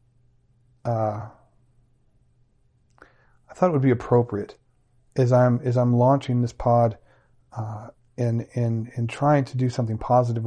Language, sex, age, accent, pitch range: English, male, 40-59, American, 115-130 Hz